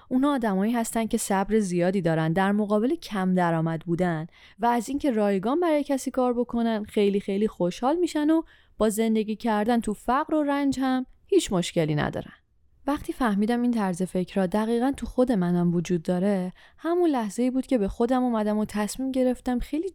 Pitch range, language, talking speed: 195-275 Hz, Persian, 175 wpm